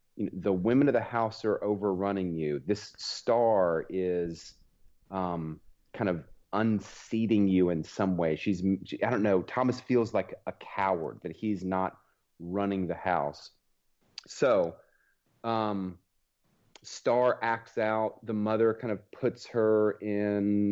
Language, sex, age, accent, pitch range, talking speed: English, male, 30-49, American, 90-105 Hz, 135 wpm